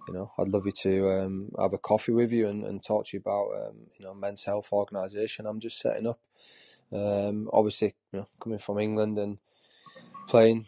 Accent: British